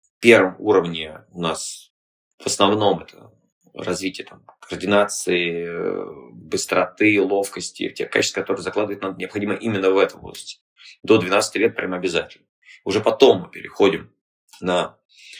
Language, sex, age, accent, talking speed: Russian, male, 20-39, native, 125 wpm